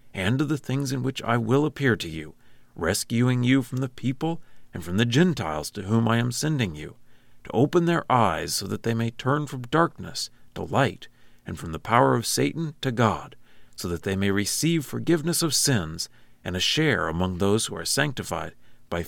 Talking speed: 200 wpm